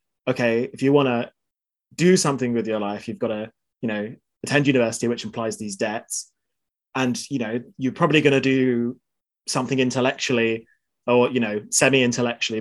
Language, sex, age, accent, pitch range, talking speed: English, male, 20-39, British, 120-145 Hz, 165 wpm